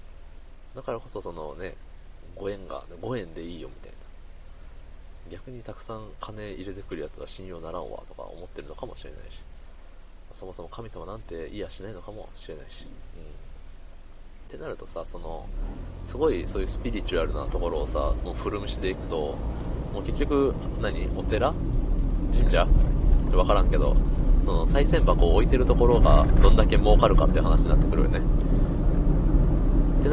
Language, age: Japanese, 20-39